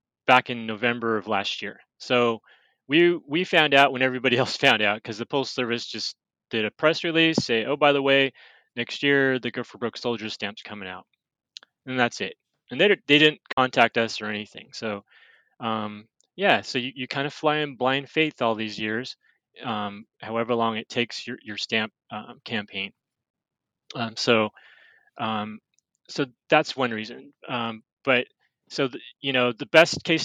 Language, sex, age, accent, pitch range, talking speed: English, male, 20-39, American, 110-140 Hz, 180 wpm